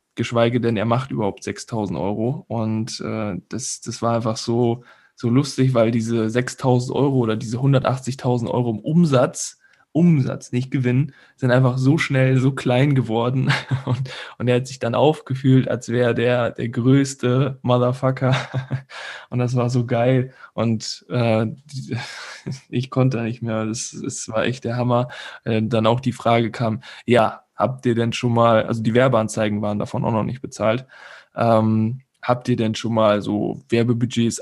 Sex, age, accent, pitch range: male, 10-29, German, 115-130 Hz